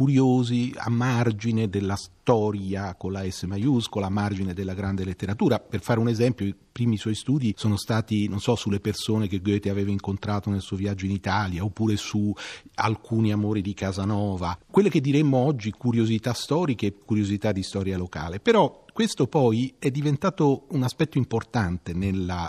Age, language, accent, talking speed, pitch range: 40-59, Italian, native, 165 wpm, 95-125 Hz